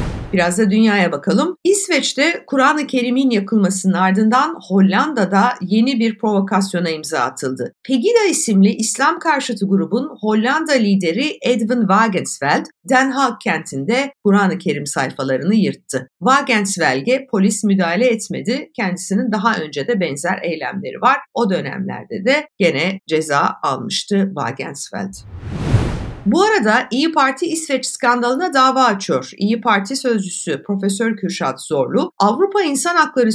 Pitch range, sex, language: 190-265 Hz, female, Turkish